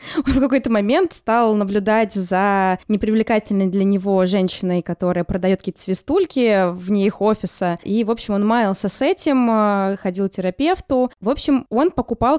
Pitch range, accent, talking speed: 190-245 Hz, native, 155 wpm